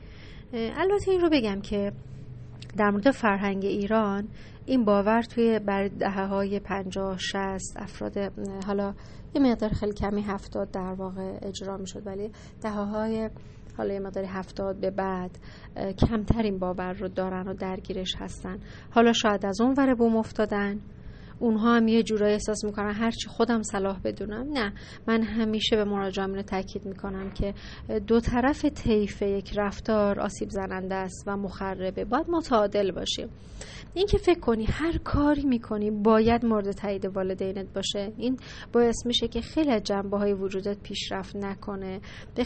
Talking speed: 150 wpm